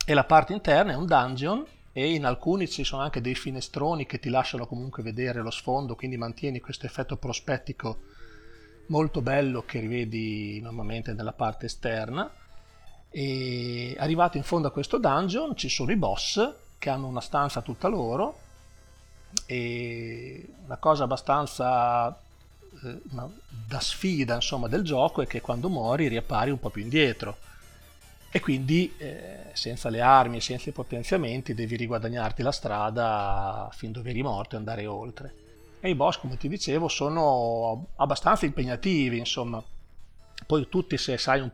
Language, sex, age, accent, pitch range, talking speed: Italian, male, 40-59, native, 115-140 Hz, 155 wpm